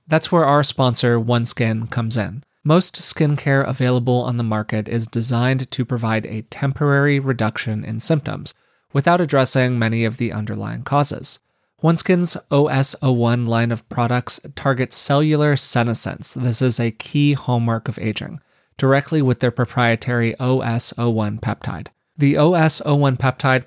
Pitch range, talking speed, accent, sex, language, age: 120-140 Hz, 135 wpm, American, male, English, 30-49